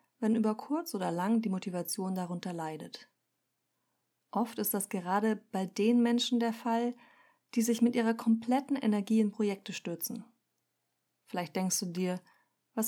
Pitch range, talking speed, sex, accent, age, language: 200-235 Hz, 150 wpm, female, German, 30-49, German